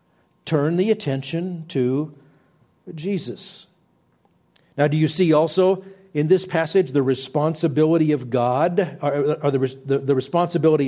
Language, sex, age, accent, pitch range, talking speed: English, male, 50-69, American, 135-175 Hz, 120 wpm